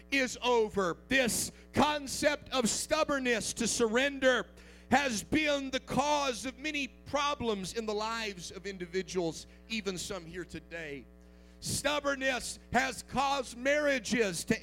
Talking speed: 120 wpm